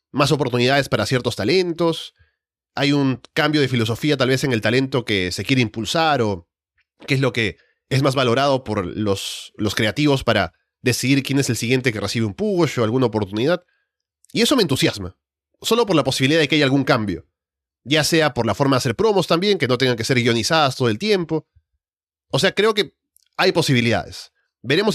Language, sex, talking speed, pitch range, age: Spanish, male, 195 wpm, 115-150 Hz, 30-49